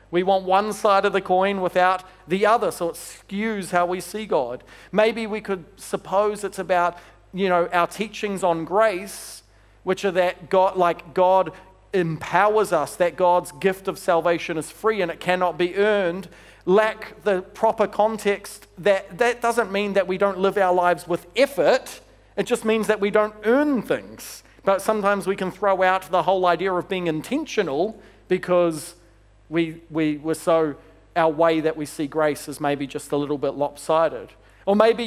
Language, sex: English, male